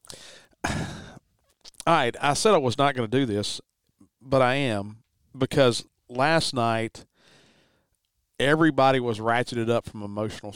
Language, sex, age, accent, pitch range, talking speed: English, male, 40-59, American, 110-135 Hz, 135 wpm